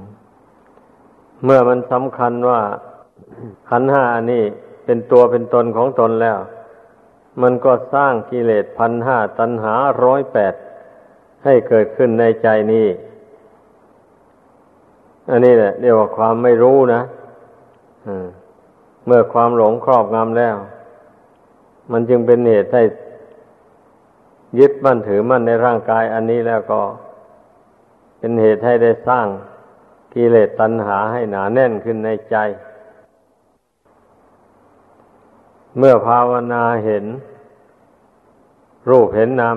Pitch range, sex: 110-120 Hz, male